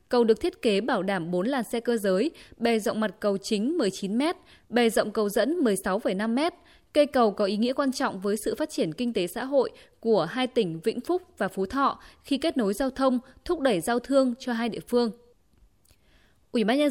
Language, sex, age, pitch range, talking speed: Vietnamese, female, 20-39, 210-275 Hz, 215 wpm